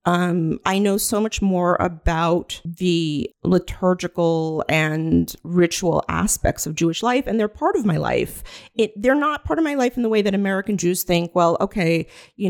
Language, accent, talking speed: English, American, 180 wpm